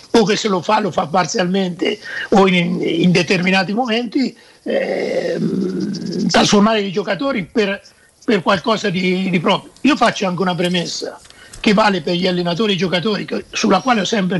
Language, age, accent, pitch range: Italian, 50-69, native, 185-225 Hz